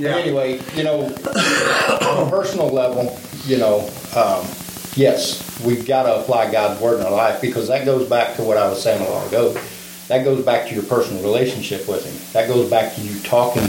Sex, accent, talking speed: male, American, 210 wpm